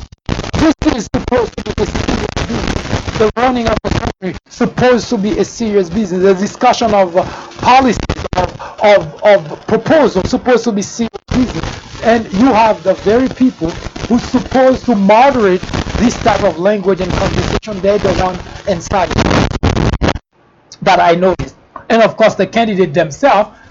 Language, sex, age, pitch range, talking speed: English, male, 60-79, 175-220 Hz, 160 wpm